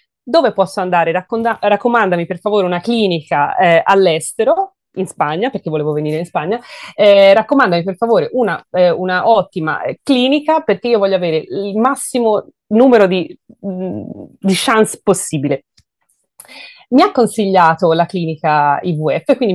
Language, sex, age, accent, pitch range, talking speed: Spanish, female, 30-49, Italian, 180-230 Hz, 140 wpm